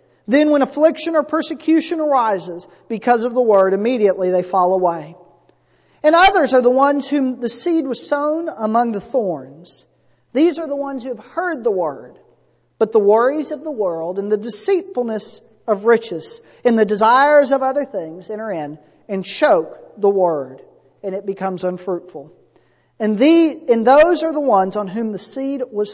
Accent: American